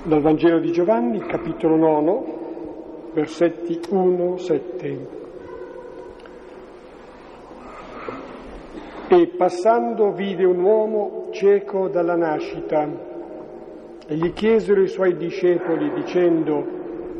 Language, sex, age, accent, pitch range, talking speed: Italian, male, 50-69, native, 160-205 Hz, 80 wpm